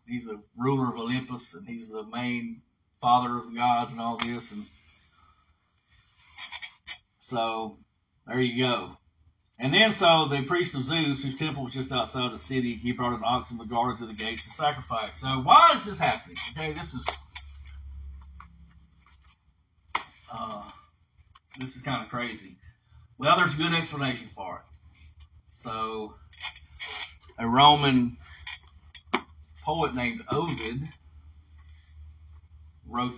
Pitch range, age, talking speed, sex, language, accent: 90-135 Hz, 50-69, 135 wpm, male, English, American